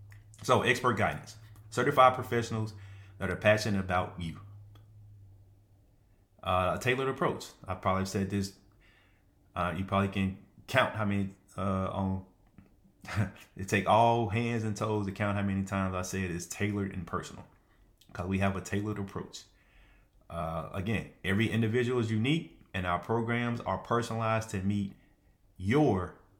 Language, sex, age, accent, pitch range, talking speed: English, male, 30-49, American, 95-115 Hz, 150 wpm